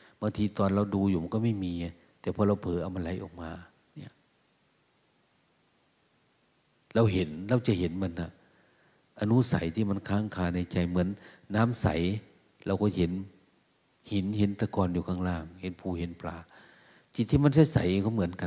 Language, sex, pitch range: Thai, male, 90-110 Hz